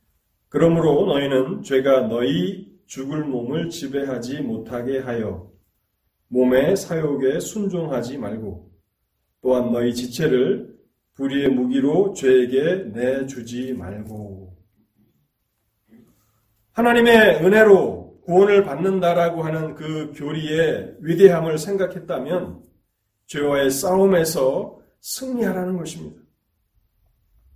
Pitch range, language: 105-170 Hz, Korean